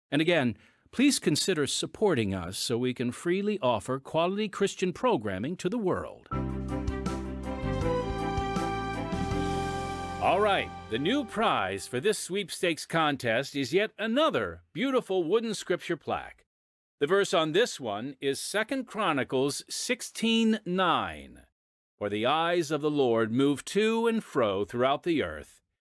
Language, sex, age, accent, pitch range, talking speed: English, male, 50-69, American, 115-180 Hz, 130 wpm